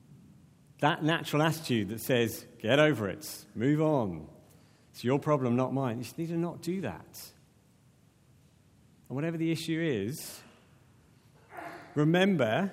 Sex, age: male, 50-69